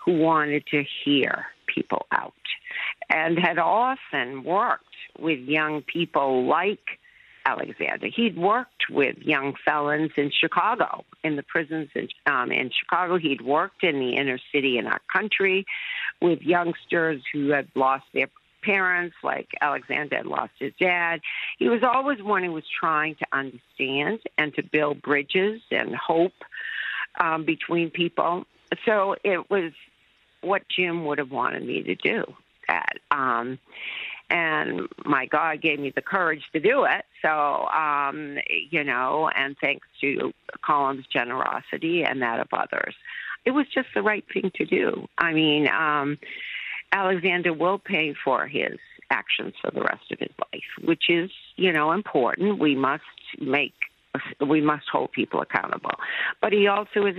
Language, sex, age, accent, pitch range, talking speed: English, female, 50-69, American, 145-195 Hz, 150 wpm